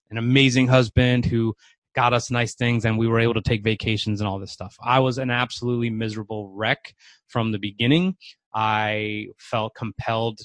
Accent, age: American, 20-39